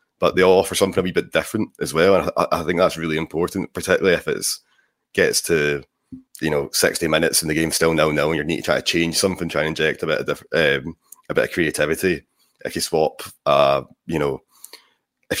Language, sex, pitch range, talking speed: English, male, 80-95 Hz, 235 wpm